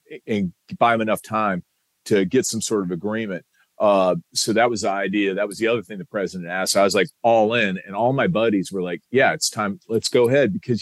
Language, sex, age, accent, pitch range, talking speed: English, male, 40-59, American, 95-115 Hz, 245 wpm